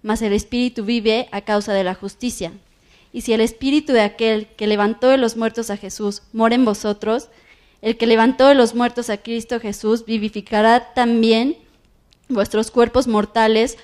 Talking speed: 170 wpm